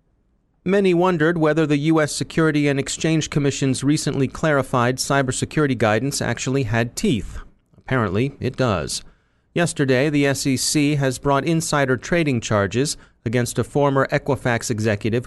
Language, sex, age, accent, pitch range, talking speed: English, male, 30-49, American, 115-140 Hz, 125 wpm